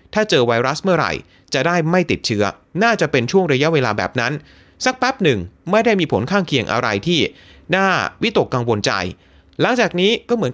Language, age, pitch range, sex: Thai, 30-49, 125-195 Hz, male